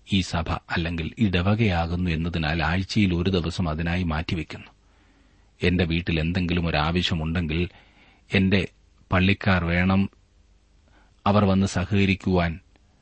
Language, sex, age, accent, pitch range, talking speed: Malayalam, male, 30-49, native, 90-105 Hz, 95 wpm